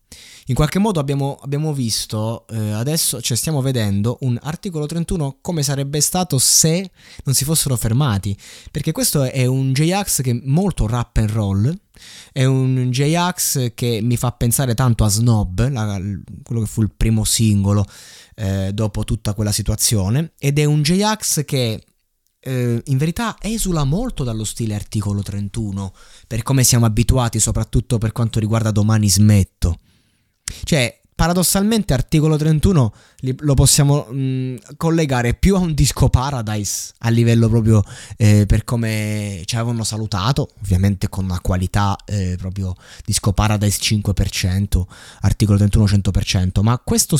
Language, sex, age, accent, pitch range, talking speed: Italian, male, 20-39, native, 105-140 Hz, 145 wpm